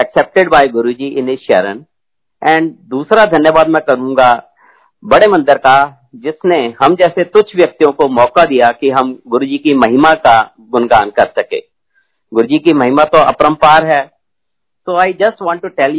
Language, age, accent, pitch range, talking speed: Hindi, 50-69, native, 125-175 Hz, 165 wpm